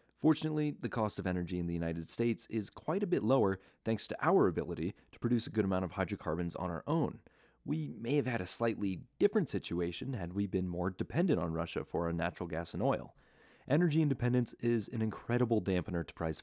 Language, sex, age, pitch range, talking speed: English, male, 30-49, 90-125 Hz, 210 wpm